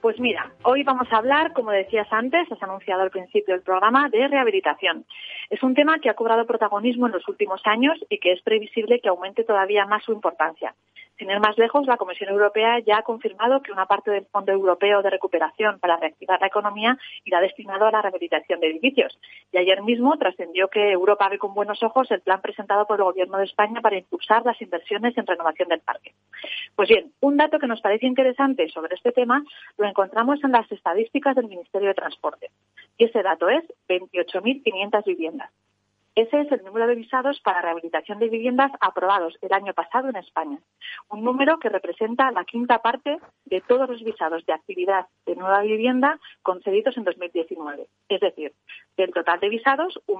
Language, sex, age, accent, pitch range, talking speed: Spanish, female, 30-49, Spanish, 190-255 Hz, 190 wpm